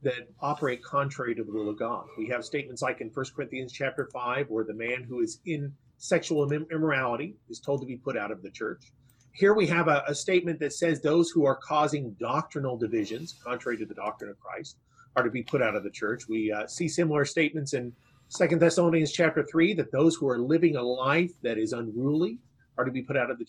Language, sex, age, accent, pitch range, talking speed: English, male, 40-59, American, 130-165 Hz, 225 wpm